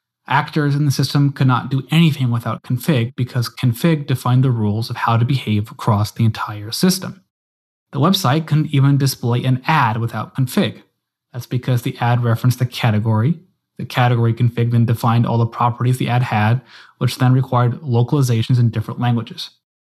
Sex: male